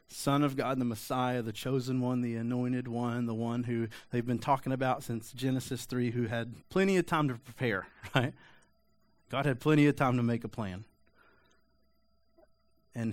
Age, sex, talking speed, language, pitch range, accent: 30-49, male, 180 wpm, English, 110-120 Hz, American